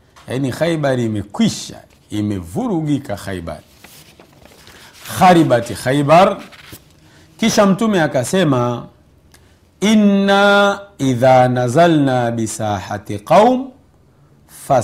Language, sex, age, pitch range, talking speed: Swahili, male, 50-69, 100-150 Hz, 65 wpm